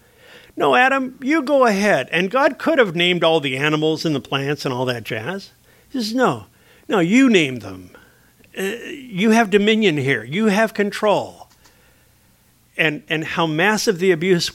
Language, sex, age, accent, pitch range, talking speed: English, male, 50-69, American, 140-180 Hz, 170 wpm